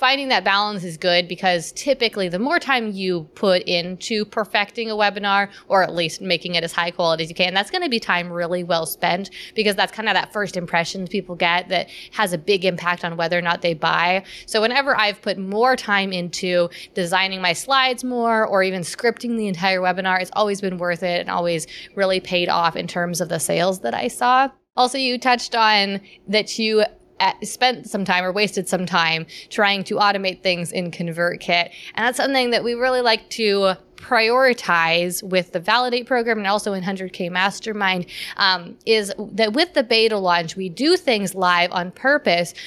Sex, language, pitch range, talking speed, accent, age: female, English, 175-220 Hz, 195 wpm, American, 20-39